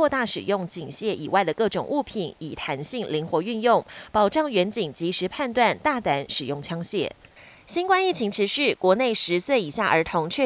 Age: 20-39